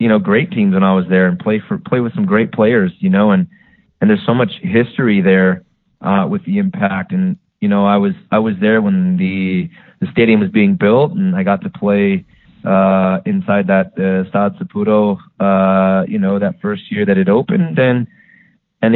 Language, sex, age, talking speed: English, male, 20-39, 205 wpm